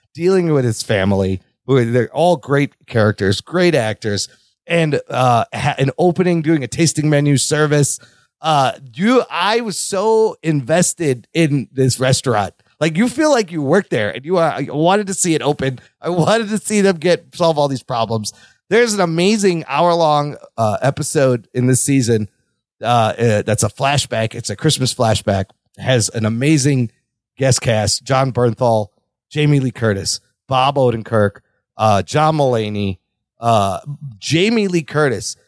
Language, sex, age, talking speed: English, male, 30-49, 155 wpm